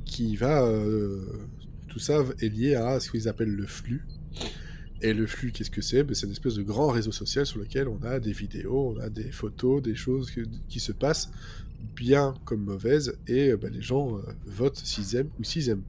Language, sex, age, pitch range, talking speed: French, male, 20-39, 105-130 Hz, 220 wpm